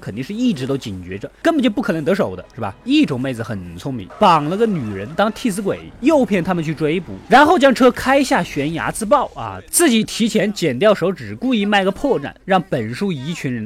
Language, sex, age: Chinese, male, 20-39